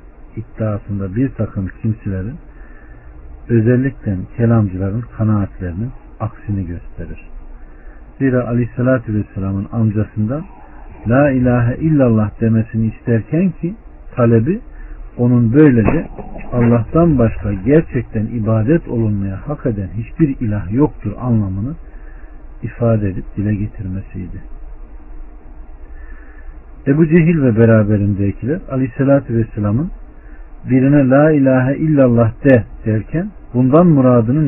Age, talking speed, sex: 50-69, 90 wpm, male